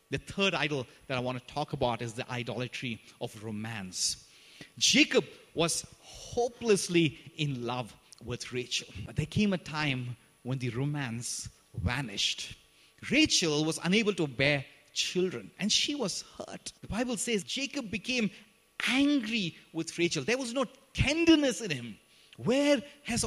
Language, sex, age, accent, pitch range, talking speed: English, male, 30-49, Indian, 140-215 Hz, 145 wpm